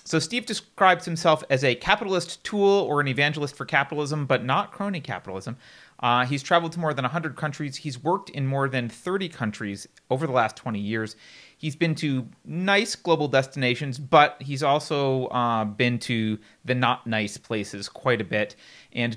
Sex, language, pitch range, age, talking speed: male, English, 115-155 Hz, 30-49, 180 wpm